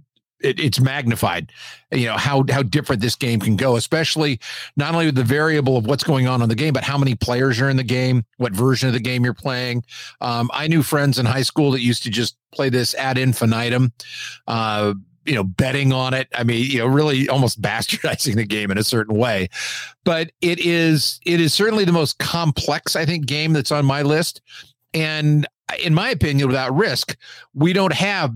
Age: 50-69